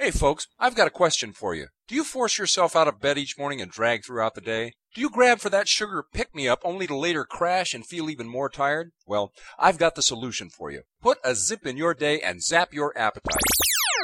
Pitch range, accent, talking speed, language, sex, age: 135-195 Hz, American, 235 wpm, English, male, 40-59